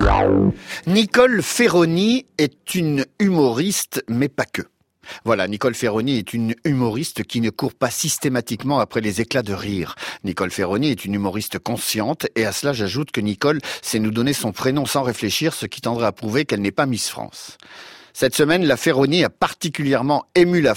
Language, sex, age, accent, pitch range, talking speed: French, male, 50-69, French, 120-180 Hz, 180 wpm